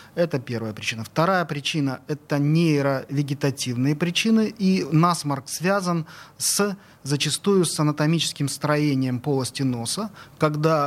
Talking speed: 110 wpm